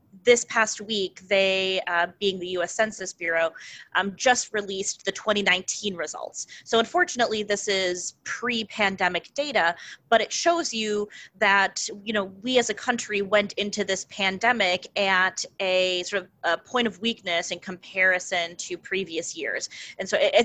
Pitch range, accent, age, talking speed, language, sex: 185-230 Hz, American, 20-39, 155 wpm, English, female